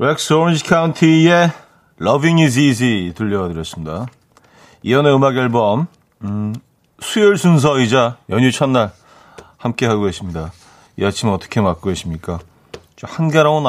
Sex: male